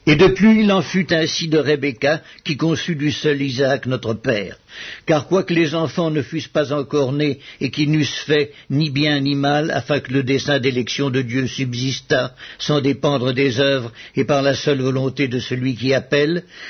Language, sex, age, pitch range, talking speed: English, male, 60-79, 135-165 Hz, 190 wpm